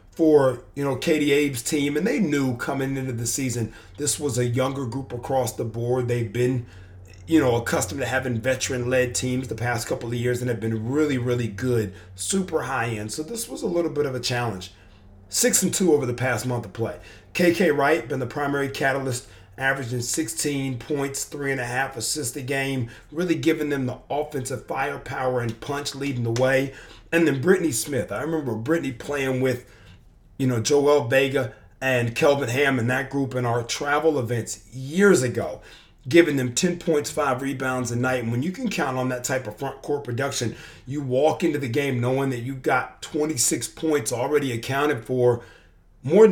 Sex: male